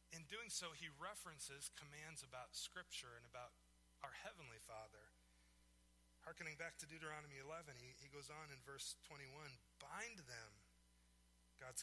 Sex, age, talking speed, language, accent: male, 30-49, 140 wpm, English, American